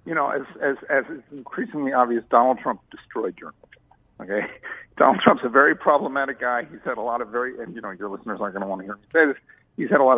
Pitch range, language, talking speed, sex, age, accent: 125-185 Hz, English, 255 wpm, male, 50-69, American